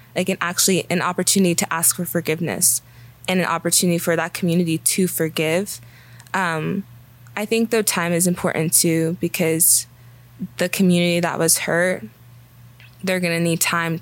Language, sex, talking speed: English, female, 155 wpm